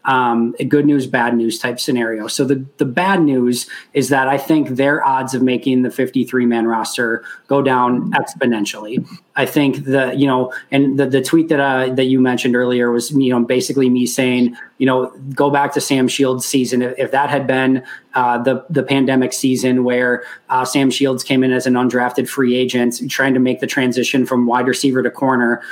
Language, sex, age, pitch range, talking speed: English, male, 20-39, 125-140 Hz, 210 wpm